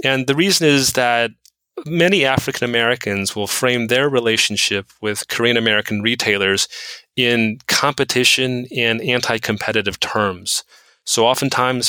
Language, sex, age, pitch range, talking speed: English, male, 30-49, 105-130 Hz, 115 wpm